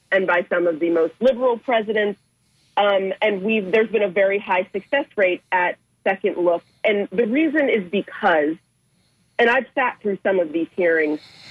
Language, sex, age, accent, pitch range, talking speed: English, female, 40-59, American, 180-225 Hz, 175 wpm